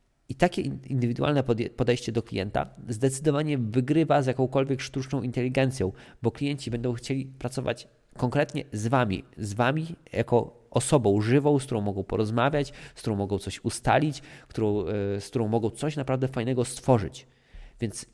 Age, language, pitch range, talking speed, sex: 20-39, Polish, 100-130 Hz, 140 wpm, male